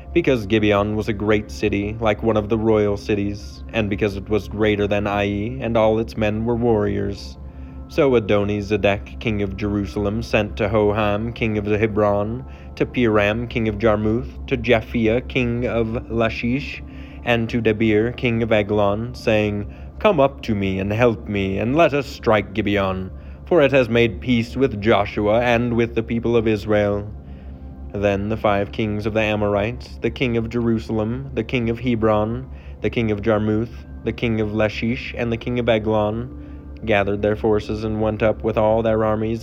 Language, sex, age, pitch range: English, male, 30-49, 100-115 Hz